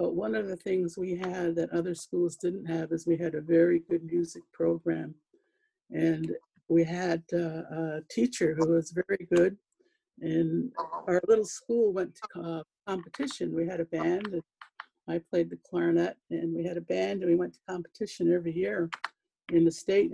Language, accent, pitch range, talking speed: English, American, 165-210 Hz, 185 wpm